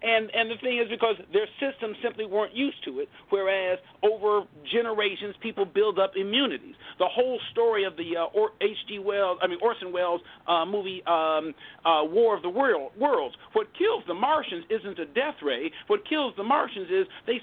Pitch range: 190-260 Hz